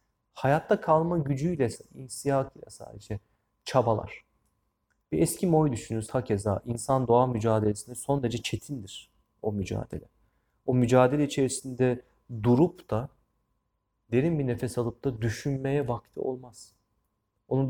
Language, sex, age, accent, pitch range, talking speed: Turkish, male, 30-49, native, 110-140 Hz, 115 wpm